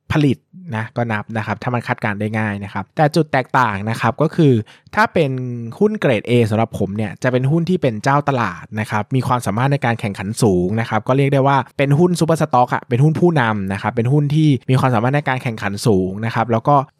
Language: Thai